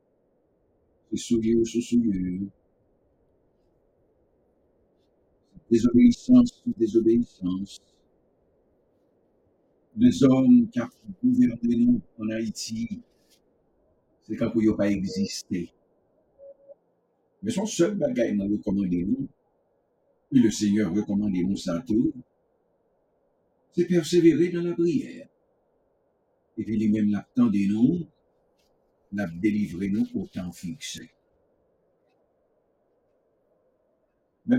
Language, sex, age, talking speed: English, male, 60-79, 90 wpm